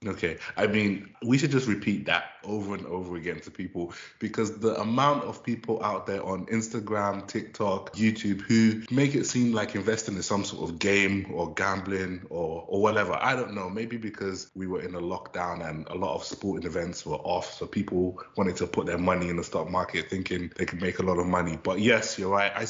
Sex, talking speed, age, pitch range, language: male, 220 wpm, 20-39, 90-115 Hz, English